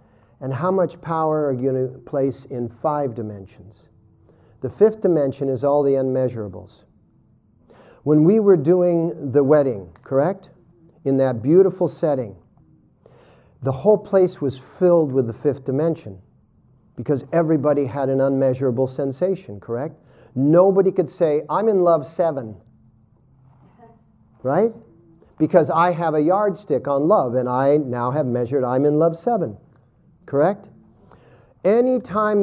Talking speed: 135 wpm